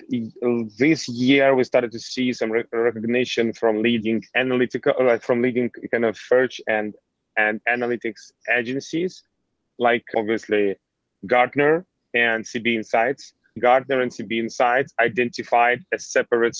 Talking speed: 120 wpm